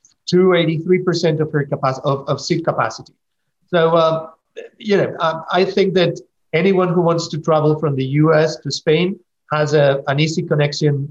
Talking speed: 165 wpm